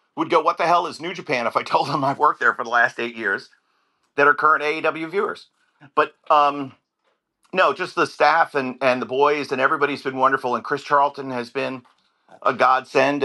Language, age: English, 50-69